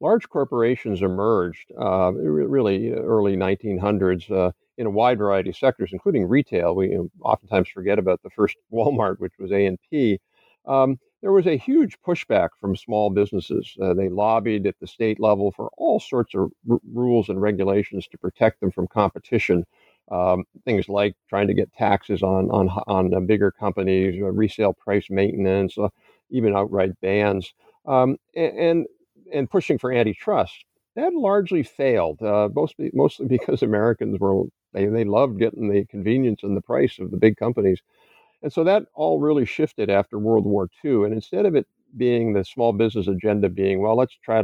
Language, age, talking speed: English, 50-69, 175 wpm